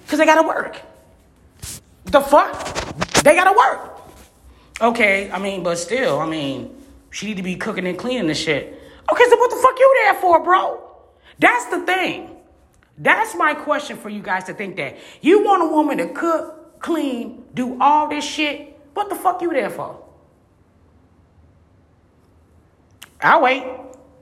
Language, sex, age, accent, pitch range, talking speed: English, female, 30-49, American, 245-365 Hz, 165 wpm